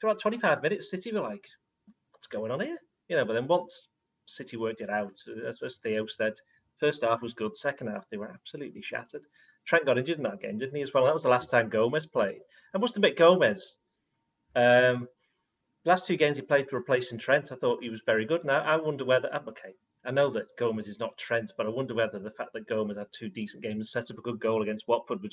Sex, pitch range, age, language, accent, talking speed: male, 110-140 Hz, 30-49, English, British, 240 wpm